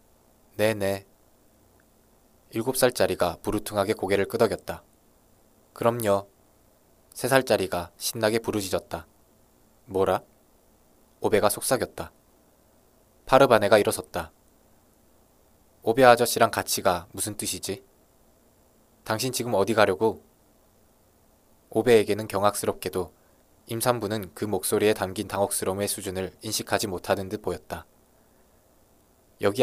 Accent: native